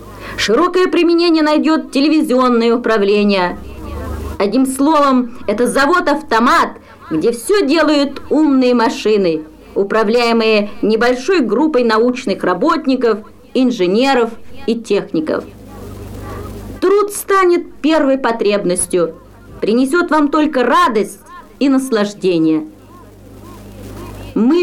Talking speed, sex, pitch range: 80 wpm, female, 205-300 Hz